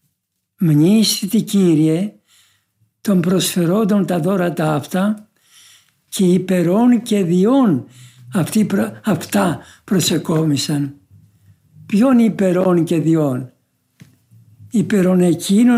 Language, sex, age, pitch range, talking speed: Greek, male, 60-79, 150-205 Hz, 75 wpm